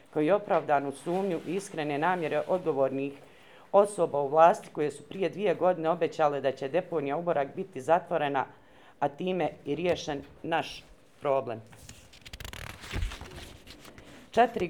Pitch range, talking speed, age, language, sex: 135-175 Hz, 120 wpm, 40-59, Croatian, female